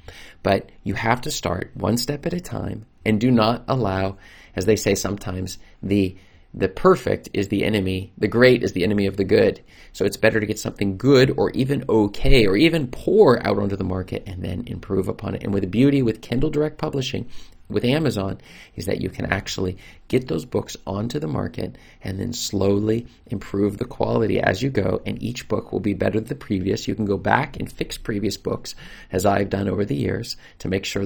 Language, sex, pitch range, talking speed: English, male, 95-125 Hz, 210 wpm